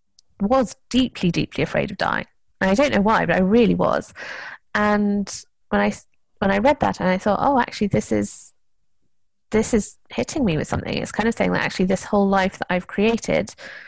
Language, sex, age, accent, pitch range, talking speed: English, female, 20-39, British, 180-230 Hz, 205 wpm